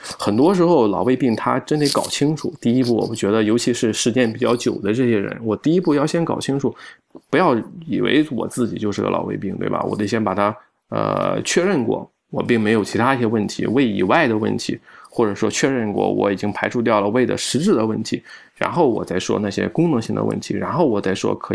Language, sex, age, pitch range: Chinese, male, 20-39, 100-125 Hz